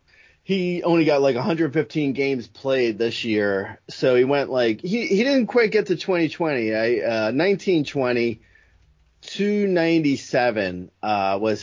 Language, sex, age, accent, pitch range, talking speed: English, male, 30-49, American, 130-180 Hz, 135 wpm